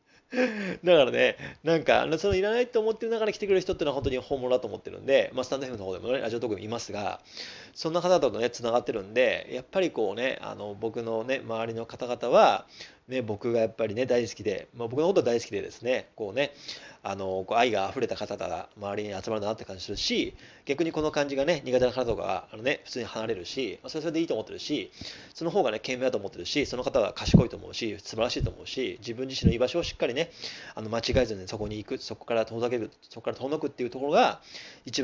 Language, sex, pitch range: Japanese, male, 105-145 Hz